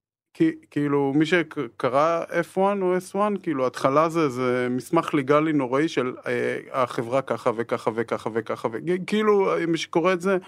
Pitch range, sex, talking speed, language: 120-165 Hz, male, 145 wpm, Hebrew